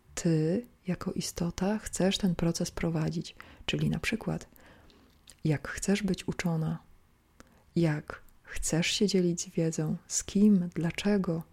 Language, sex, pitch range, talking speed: Polish, female, 160-185 Hz, 120 wpm